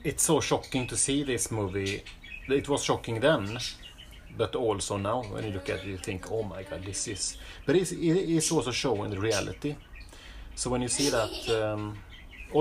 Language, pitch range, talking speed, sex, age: Swedish, 95-120 Hz, 185 wpm, male, 30-49